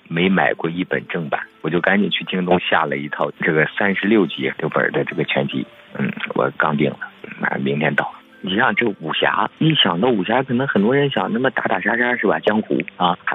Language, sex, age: Chinese, male, 50-69